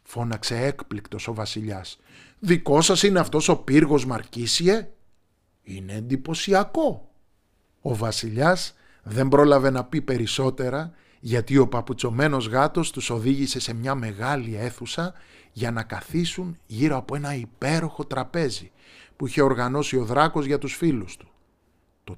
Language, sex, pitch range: Greek, male, 105-150 Hz